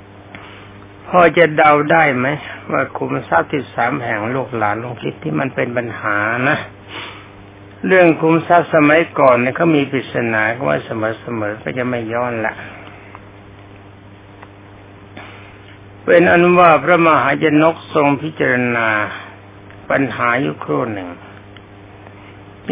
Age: 60-79